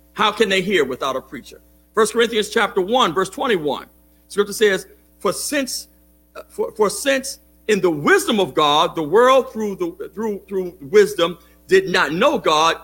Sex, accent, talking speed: male, American, 170 wpm